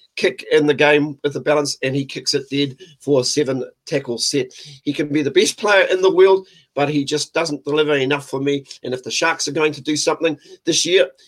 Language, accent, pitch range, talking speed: English, Australian, 140-160 Hz, 240 wpm